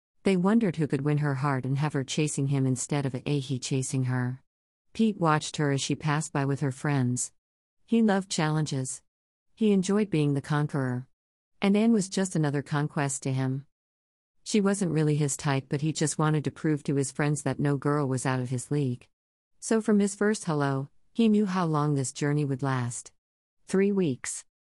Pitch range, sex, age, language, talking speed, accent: 130-165 Hz, female, 50-69, English, 195 wpm, American